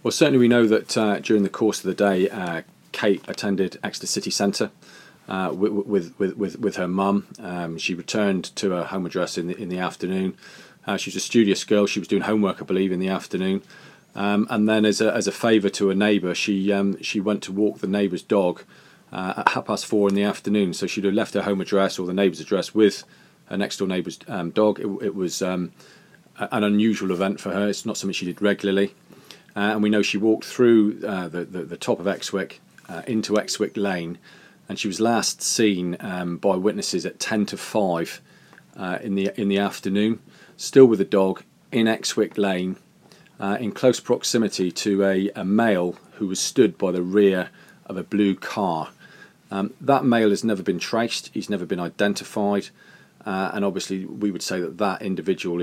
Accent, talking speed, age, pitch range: British, 200 wpm, 40-59, 95-105 Hz